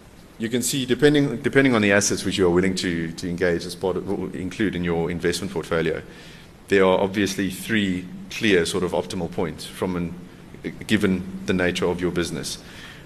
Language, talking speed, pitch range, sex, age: English, 160 wpm, 90-110 Hz, male, 30-49